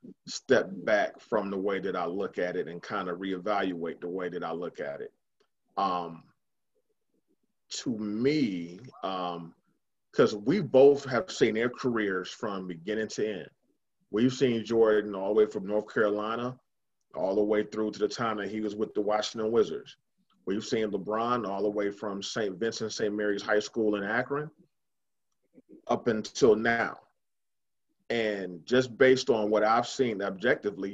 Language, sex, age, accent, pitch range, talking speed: English, male, 30-49, American, 100-130 Hz, 165 wpm